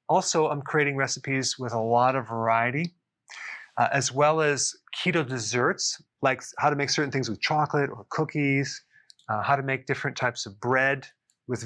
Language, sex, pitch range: English, male, 125-150 Hz